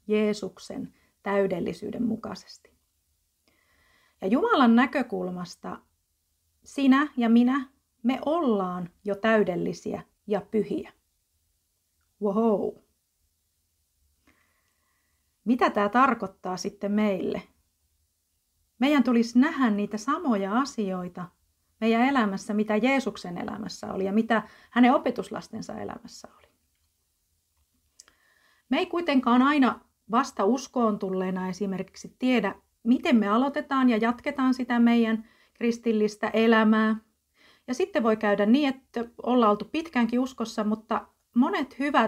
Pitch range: 190-245 Hz